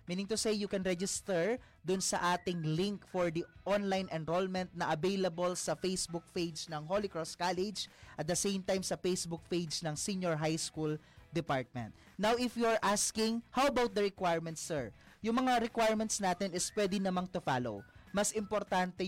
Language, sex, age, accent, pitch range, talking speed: Filipino, male, 20-39, native, 165-205 Hz, 175 wpm